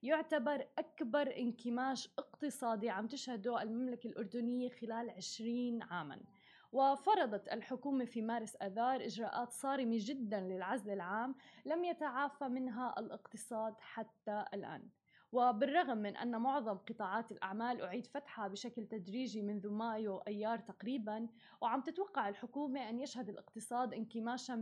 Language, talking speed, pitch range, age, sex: Arabic, 115 wpm, 225-270 Hz, 20-39, female